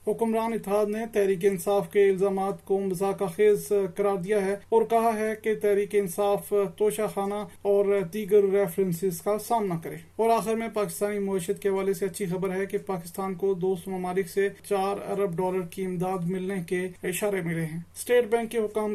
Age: 30-49